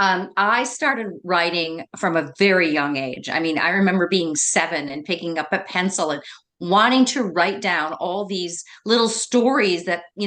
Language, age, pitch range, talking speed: English, 50-69, 175-245 Hz, 180 wpm